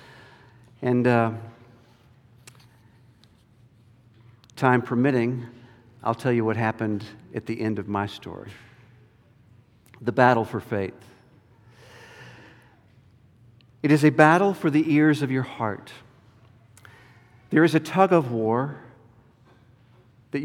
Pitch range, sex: 120-150 Hz, male